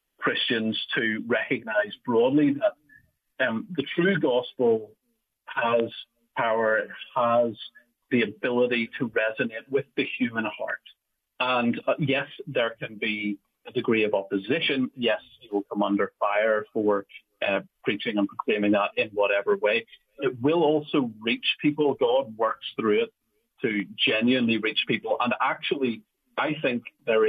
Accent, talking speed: British, 140 wpm